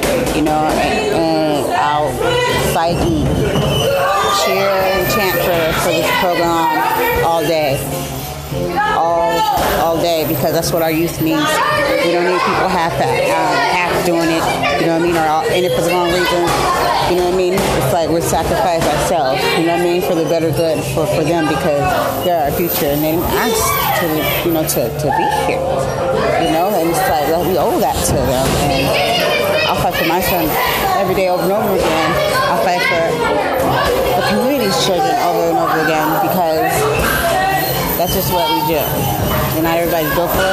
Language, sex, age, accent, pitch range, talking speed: English, female, 30-49, American, 160-185 Hz, 185 wpm